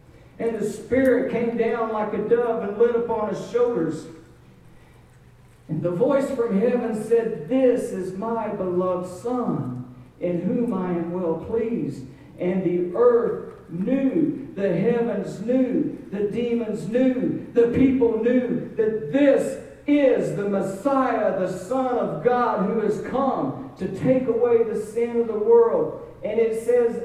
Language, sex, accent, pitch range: English, male, American, 155-235 Hz